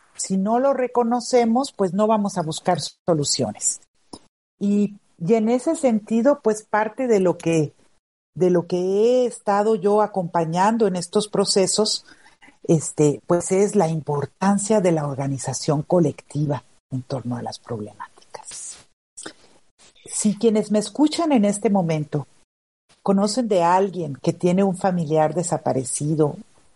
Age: 50-69